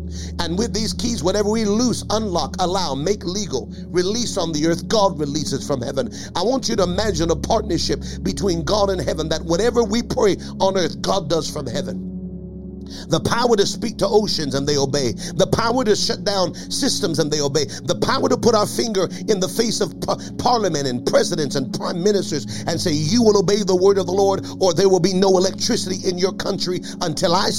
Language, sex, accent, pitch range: English, male, American, 155-200 Hz